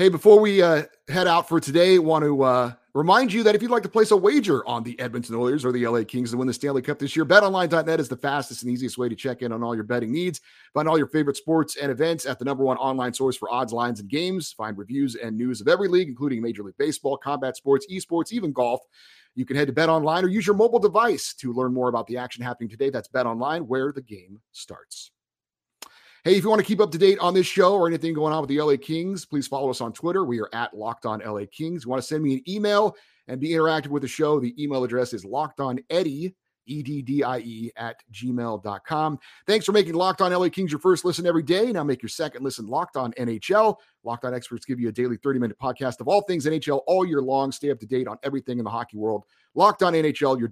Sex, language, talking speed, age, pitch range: male, English, 250 wpm, 30-49, 125-170 Hz